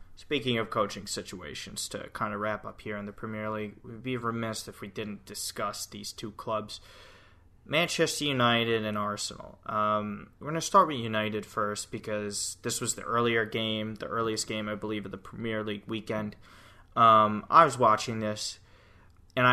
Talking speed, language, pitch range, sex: 175 wpm, English, 105-120 Hz, male